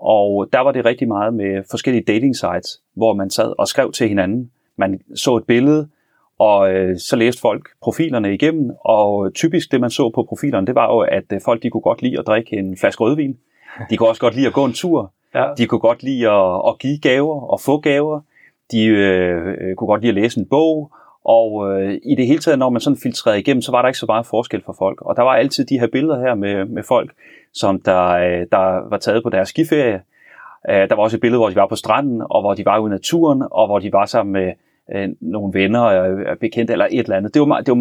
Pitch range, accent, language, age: 100-140 Hz, native, Danish, 30-49